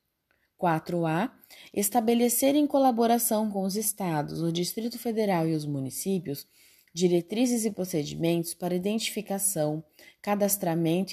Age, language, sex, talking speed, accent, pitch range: 20-39, Portuguese, female, 100 wpm, Brazilian, 165-210 Hz